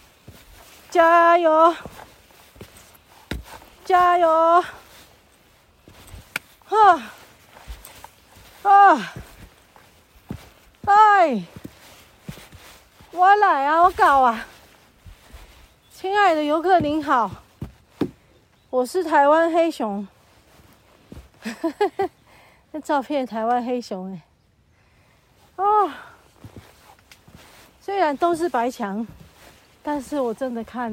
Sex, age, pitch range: female, 40-59, 260-365 Hz